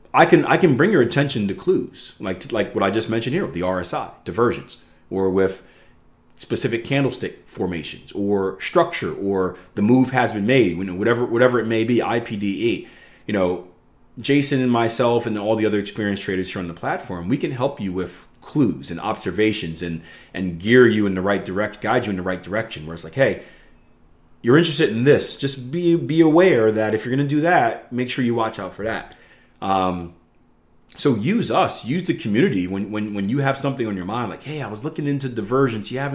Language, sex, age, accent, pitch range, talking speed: English, male, 30-49, American, 95-135 Hz, 215 wpm